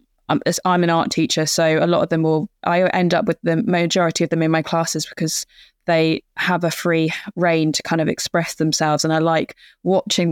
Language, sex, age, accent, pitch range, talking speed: English, female, 20-39, British, 165-185 Hz, 210 wpm